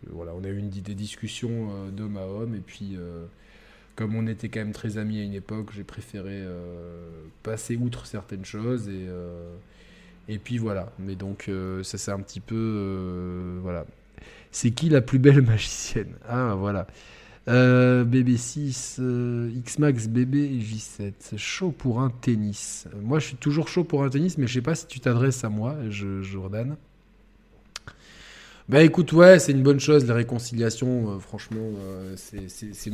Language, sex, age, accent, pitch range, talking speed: French, male, 20-39, French, 100-130 Hz, 175 wpm